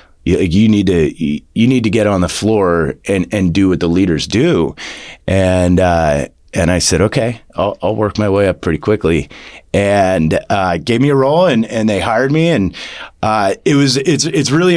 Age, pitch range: 30-49, 85-120 Hz